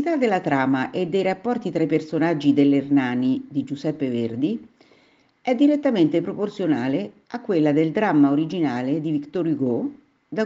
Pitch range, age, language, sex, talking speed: 140-235 Hz, 50-69, Italian, female, 140 wpm